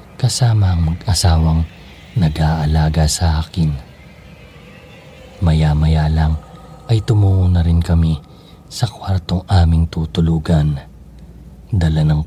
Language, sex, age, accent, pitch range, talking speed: Filipino, male, 40-59, native, 75-90 Hz, 95 wpm